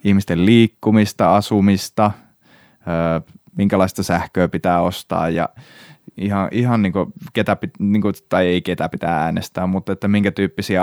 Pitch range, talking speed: 90-105 Hz, 125 wpm